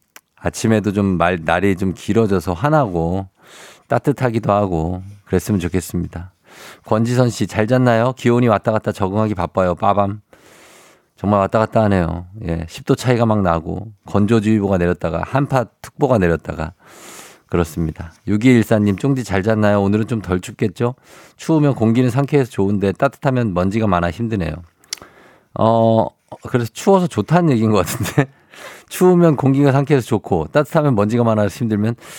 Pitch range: 95-125 Hz